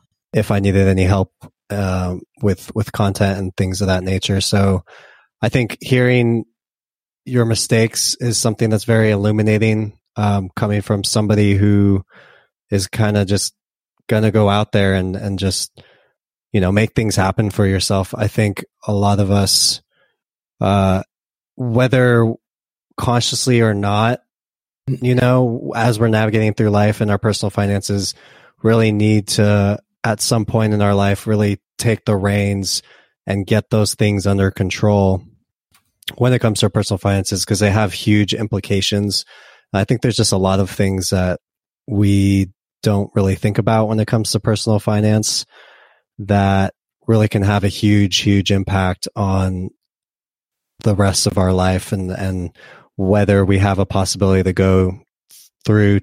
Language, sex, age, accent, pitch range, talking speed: English, male, 20-39, American, 95-110 Hz, 155 wpm